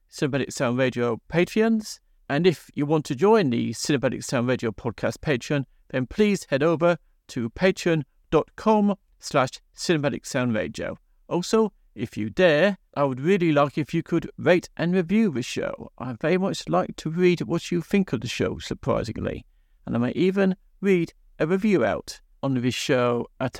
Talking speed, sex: 165 wpm, male